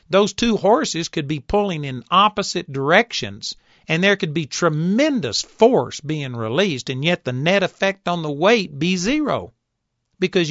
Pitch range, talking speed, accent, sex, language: 145-200 Hz, 160 wpm, American, male, English